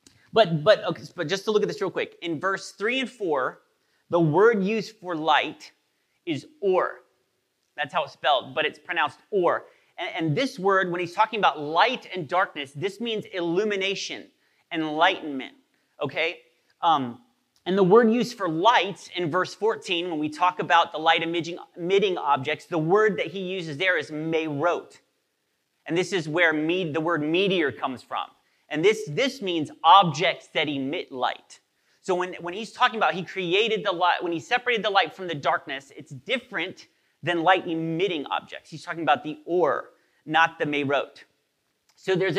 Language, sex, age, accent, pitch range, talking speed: English, male, 30-49, American, 160-205 Hz, 175 wpm